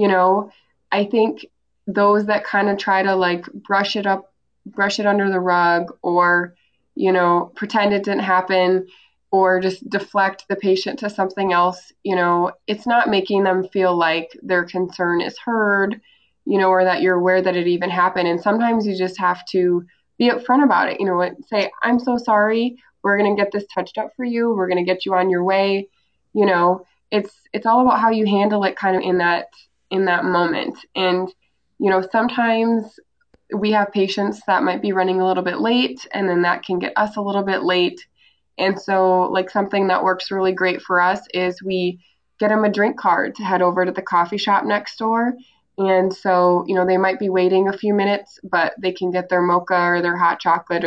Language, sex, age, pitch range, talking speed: English, female, 20-39, 180-205 Hz, 210 wpm